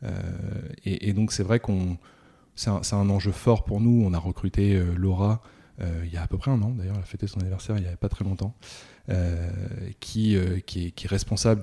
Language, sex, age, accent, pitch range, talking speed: French, male, 20-39, French, 90-105 Hz, 250 wpm